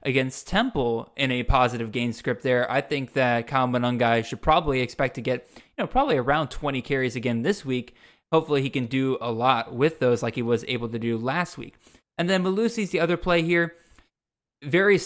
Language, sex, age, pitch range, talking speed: English, male, 20-39, 125-155 Hz, 205 wpm